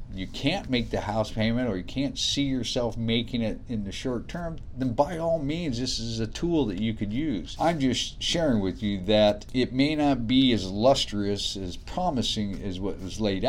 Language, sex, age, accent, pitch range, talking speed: English, male, 50-69, American, 95-125 Hz, 210 wpm